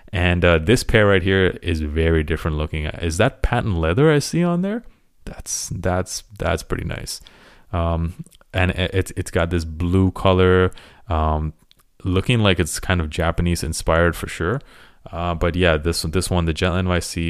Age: 20-39